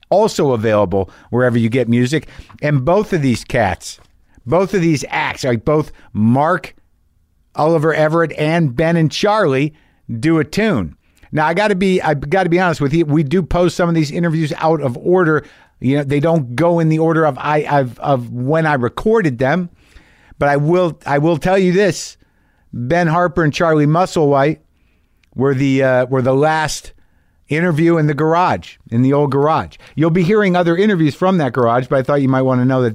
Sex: male